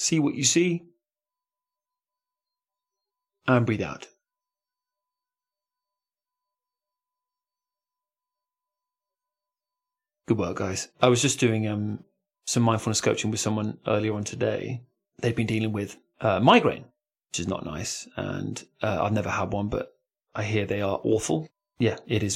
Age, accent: 30-49, British